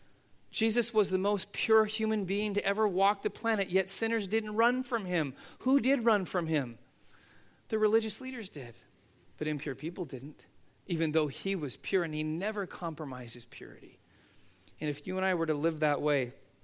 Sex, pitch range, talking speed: male, 140-190 Hz, 185 wpm